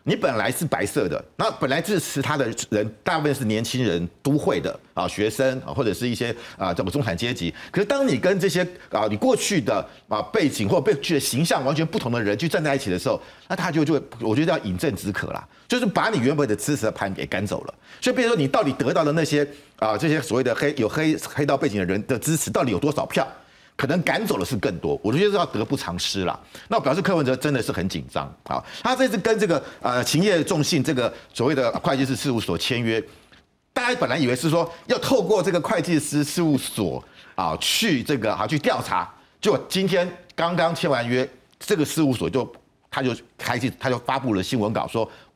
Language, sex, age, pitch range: Chinese, male, 50-69, 120-165 Hz